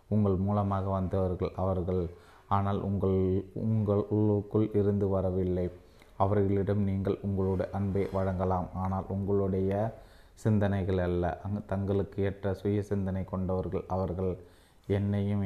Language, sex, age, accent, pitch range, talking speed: Tamil, male, 30-49, native, 95-100 Hz, 100 wpm